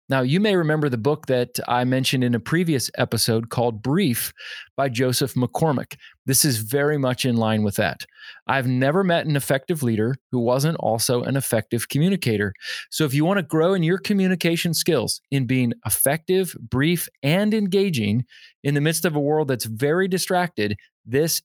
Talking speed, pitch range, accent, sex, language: 180 wpm, 125-175 Hz, American, male, English